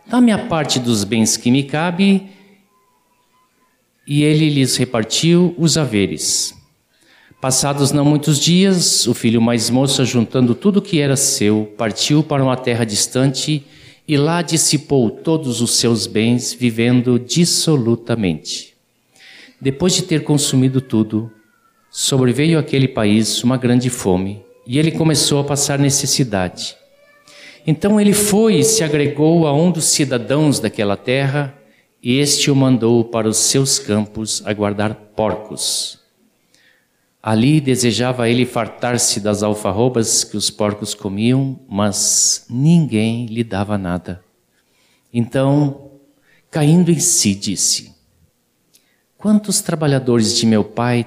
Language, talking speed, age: Portuguese, 125 wpm, 60-79